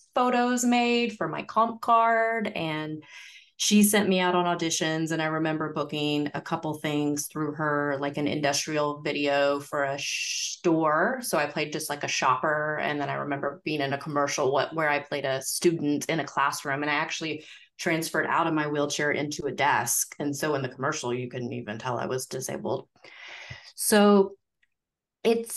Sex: female